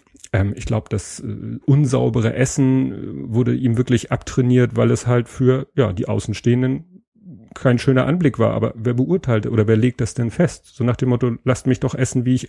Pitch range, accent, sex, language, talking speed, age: 115-130 Hz, German, male, German, 185 wpm, 30-49